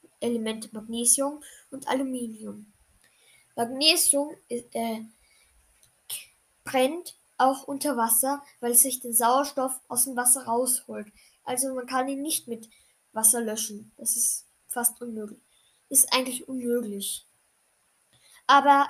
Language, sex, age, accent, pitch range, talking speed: German, female, 10-29, German, 230-280 Hz, 110 wpm